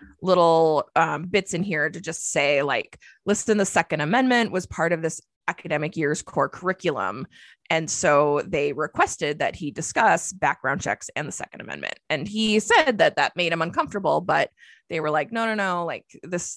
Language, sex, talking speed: English, female, 185 wpm